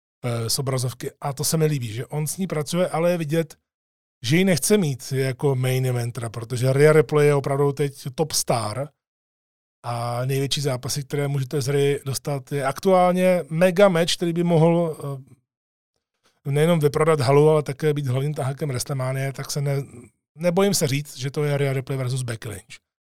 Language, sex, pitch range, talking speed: Czech, male, 130-155 Hz, 170 wpm